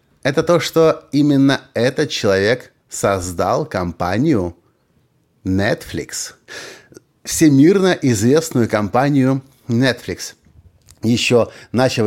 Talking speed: 75 wpm